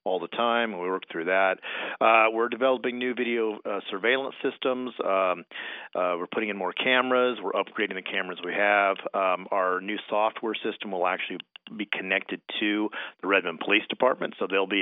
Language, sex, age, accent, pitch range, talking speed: English, male, 40-59, American, 95-120 Hz, 180 wpm